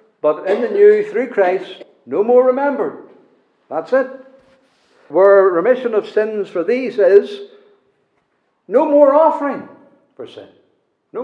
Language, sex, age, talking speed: English, male, 60-79, 130 wpm